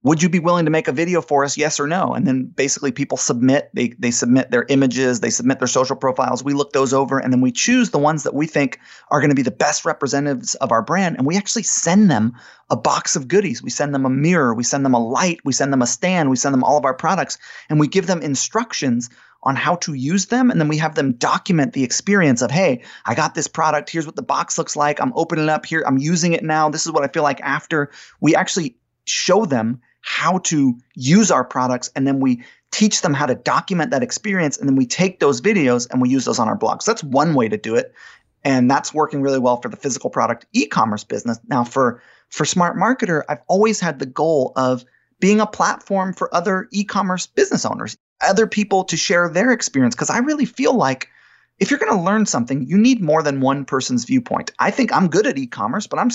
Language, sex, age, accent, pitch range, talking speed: English, male, 30-49, American, 135-185 Hz, 245 wpm